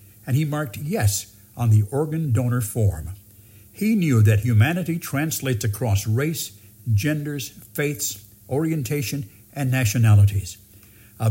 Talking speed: 115 wpm